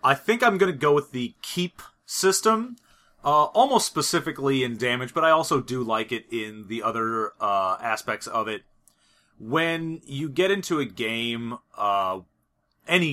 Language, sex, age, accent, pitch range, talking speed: English, male, 30-49, American, 120-155 Hz, 165 wpm